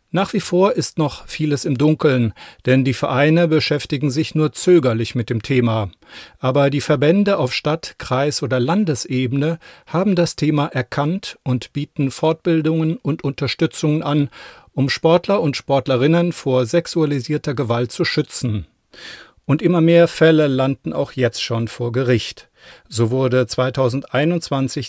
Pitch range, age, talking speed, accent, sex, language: 125-155 Hz, 40-59, 140 wpm, German, male, German